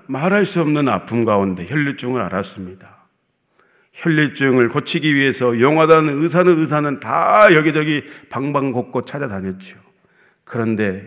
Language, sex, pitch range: Korean, male, 120-160 Hz